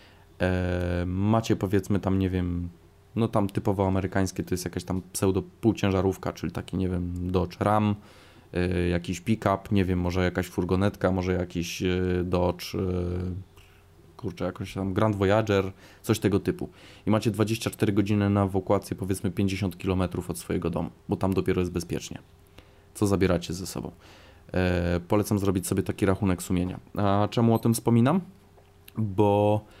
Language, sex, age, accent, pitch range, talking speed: Polish, male, 20-39, native, 90-110 Hz, 155 wpm